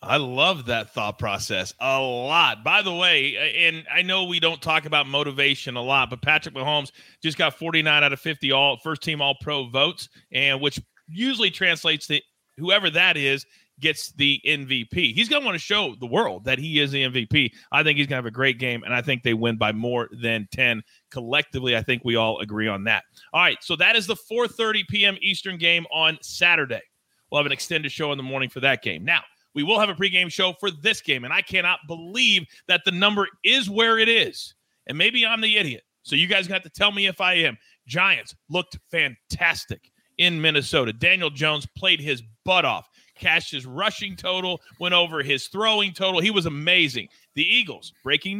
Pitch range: 140-190 Hz